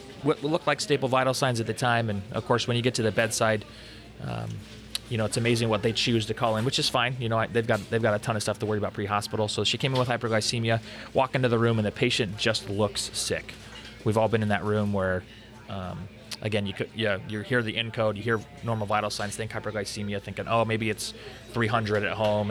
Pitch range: 105-115 Hz